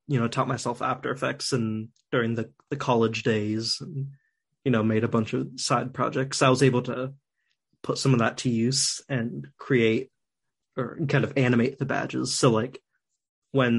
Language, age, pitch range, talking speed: English, 20-39, 115-140 Hz, 185 wpm